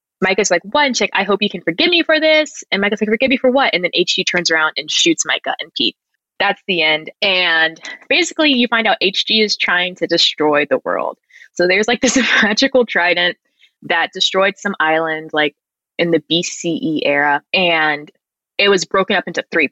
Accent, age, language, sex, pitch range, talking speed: American, 20-39, English, female, 165-255 Hz, 200 wpm